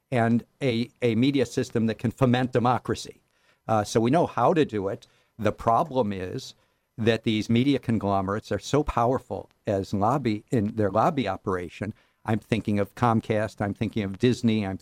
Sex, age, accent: male, 50-69, American